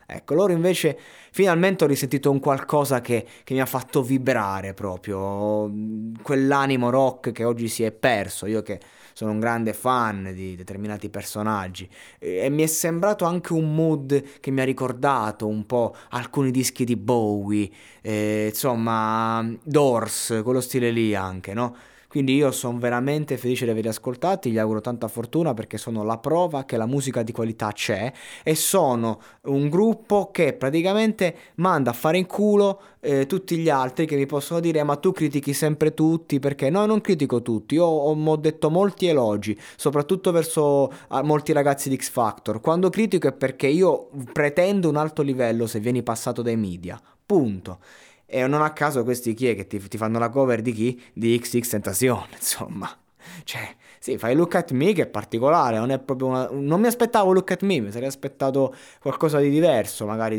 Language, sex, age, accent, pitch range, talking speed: Italian, male, 20-39, native, 115-155 Hz, 180 wpm